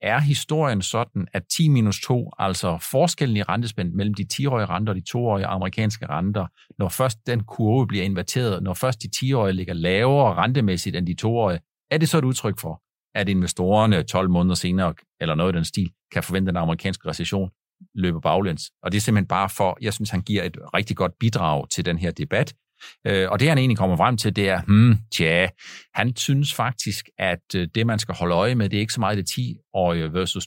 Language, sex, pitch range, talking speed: Danish, male, 95-125 Hz, 215 wpm